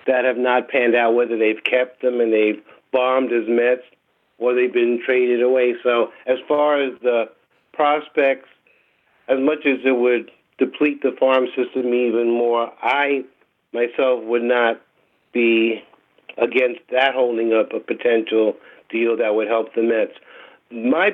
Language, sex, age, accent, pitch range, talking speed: English, male, 50-69, American, 115-130 Hz, 155 wpm